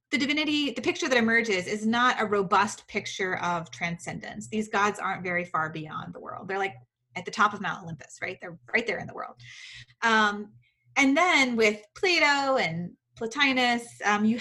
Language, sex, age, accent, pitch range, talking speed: English, female, 20-39, American, 180-235 Hz, 185 wpm